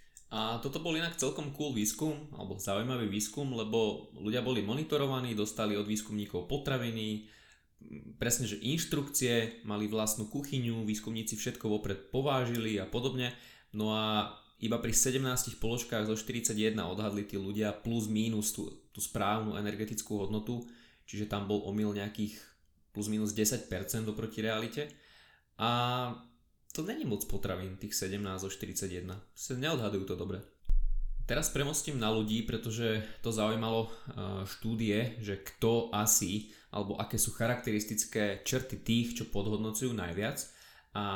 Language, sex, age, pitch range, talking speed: Slovak, male, 20-39, 105-120 Hz, 135 wpm